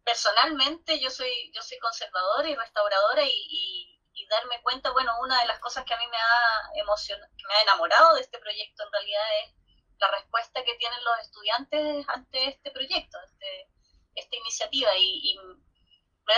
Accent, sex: American, female